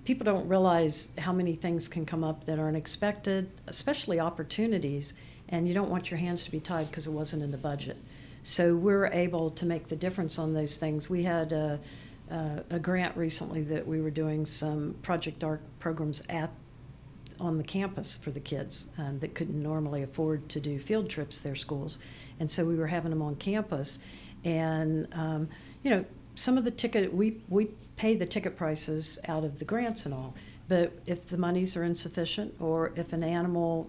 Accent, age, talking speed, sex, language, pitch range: American, 50-69, 195 wpm, female, English, 155-175 Hz